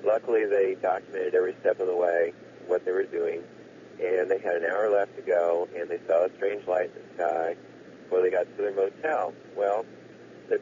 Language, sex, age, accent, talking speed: English, male, 50-69, American, 210 wpm